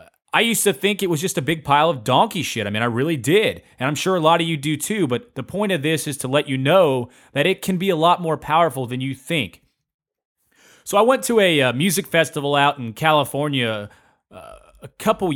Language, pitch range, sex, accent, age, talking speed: English, 125-170 Hz, male, American, 30-49, 240 wpm